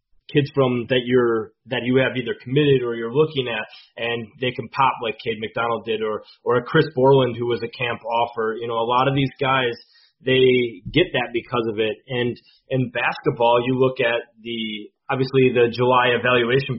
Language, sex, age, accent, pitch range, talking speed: English, male, 30-49, American, 120-135 Hz, 195 wpm